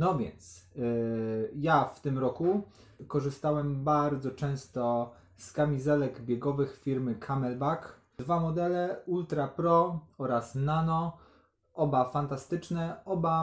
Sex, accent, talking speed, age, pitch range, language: male, native, 105 wpm, 20-39, 120-150 Hz, Polish